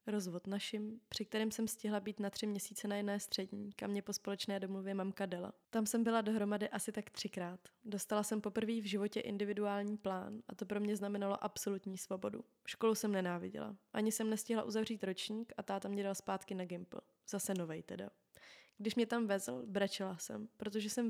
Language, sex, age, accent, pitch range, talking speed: Czech, female, 20-39, native, 200-225 Hz, 190 wpm